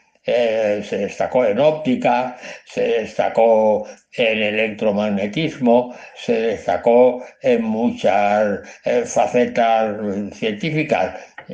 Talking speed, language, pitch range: 85 wpm, Spanish, 115-160 Hz